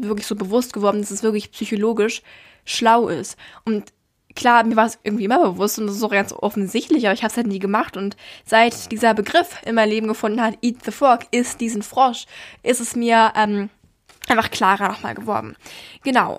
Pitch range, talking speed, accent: 220-255 Hz, 195 wpm, German